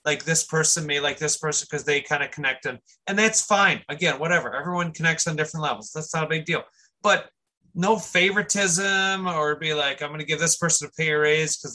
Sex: male